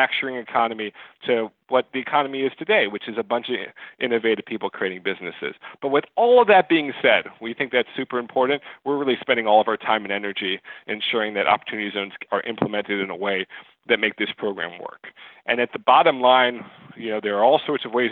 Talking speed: 210 wpm